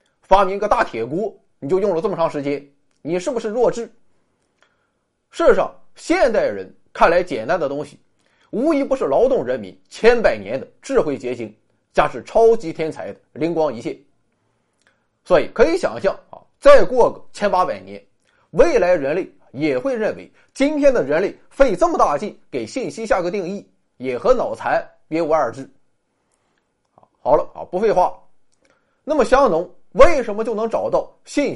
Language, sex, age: Chinese, male, 20-39